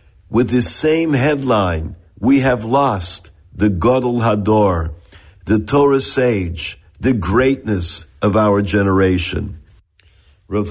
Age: 50-69